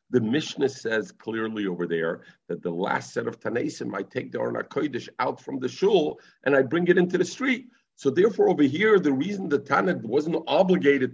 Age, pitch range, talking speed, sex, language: 50-69, 105-155 Hz, 205 wpm, male, English